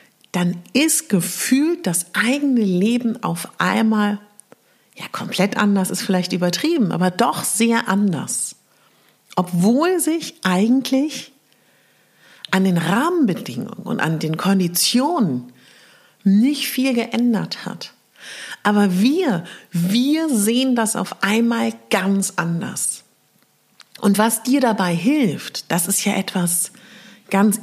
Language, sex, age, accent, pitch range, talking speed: German, female, 60-79, German, 165-220 Hz, 110 wpm